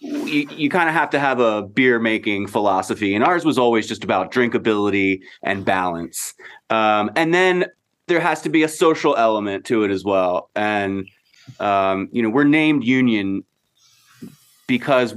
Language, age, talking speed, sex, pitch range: English, 30-49, 160 wpm, male, 95-120 Hz